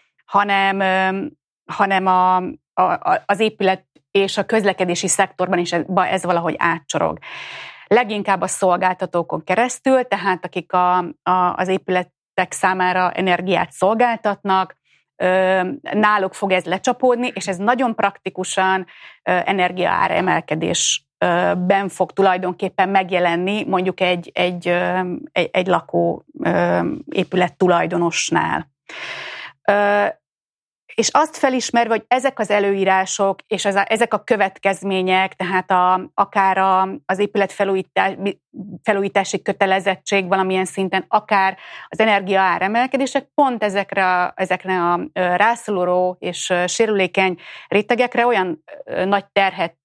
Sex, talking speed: female, 105 wpm